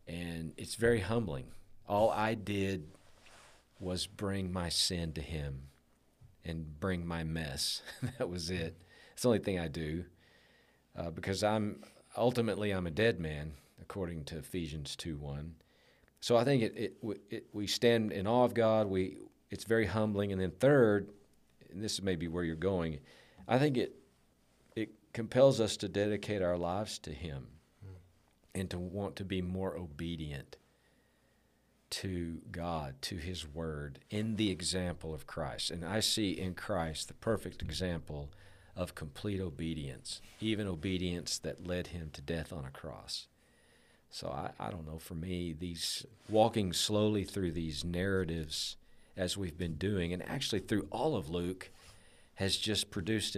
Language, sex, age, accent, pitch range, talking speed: English, male, 40-59, American, 80-100 Hz, 155 wpm